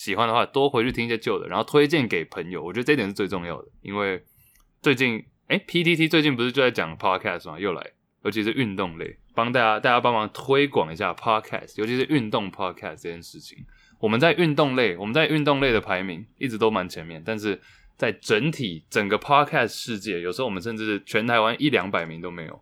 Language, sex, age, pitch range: English, male, 20-39, 95-130 Hz